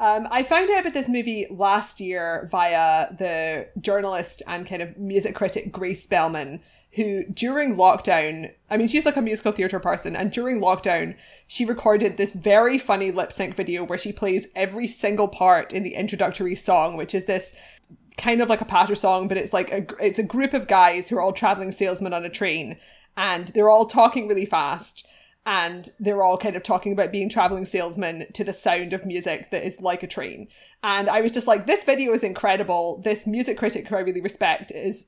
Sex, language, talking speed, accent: female, English, 205 wpm, British